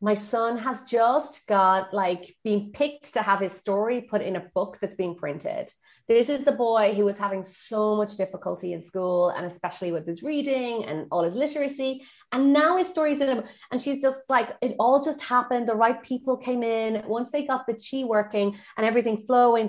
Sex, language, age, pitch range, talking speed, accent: female, English, 30-49, 195-260 Hz, 205 wpm, Irish